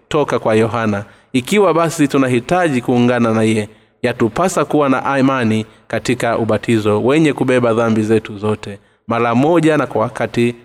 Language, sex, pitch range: Swahili, male, 115-145 Hz